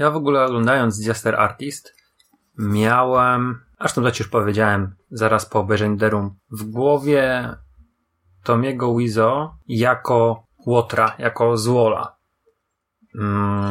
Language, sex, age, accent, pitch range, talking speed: Polish, male, 30-49, native, 110-140 Hz, 110 wpm